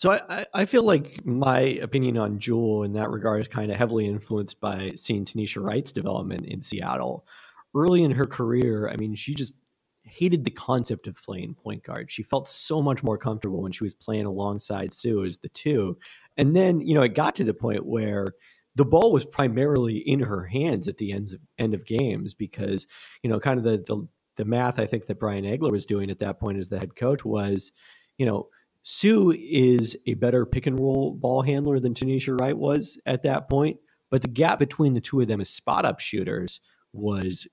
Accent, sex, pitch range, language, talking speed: American, male, 105-130 Hz, English, 210 wpm